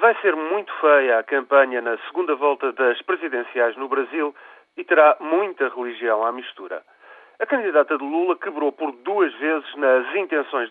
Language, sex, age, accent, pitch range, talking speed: Portuguese, male, 40-59, Portuguese, 130-165 Hz, 160 wpm